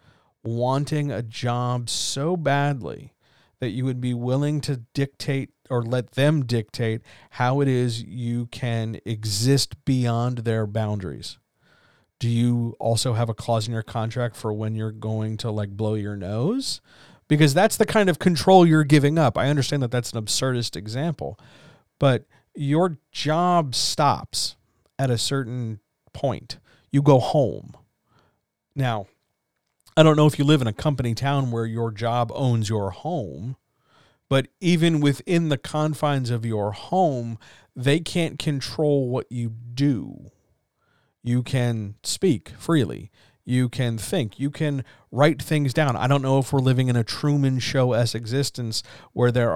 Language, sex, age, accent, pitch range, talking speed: English, male, 40-59, American, 115-140 Hz, 155 wpm